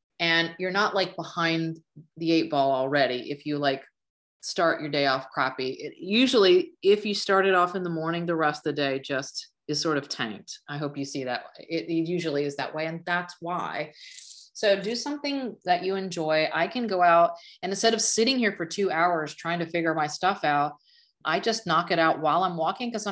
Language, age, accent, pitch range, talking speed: English, 30-49, American, 160-215 Hz, 220 wpm